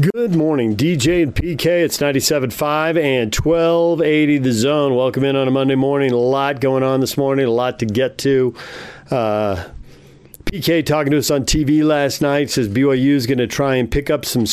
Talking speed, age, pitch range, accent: 195 wpm, 40-59, 115-145 Hz, American